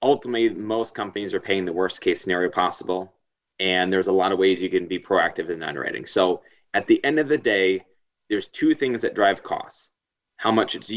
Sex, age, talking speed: male, 30-49, 210 wpm